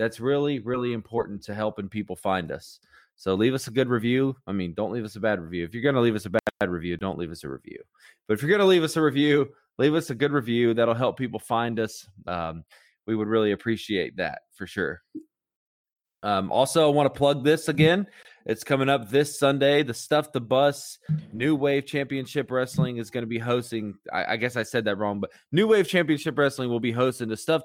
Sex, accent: male, American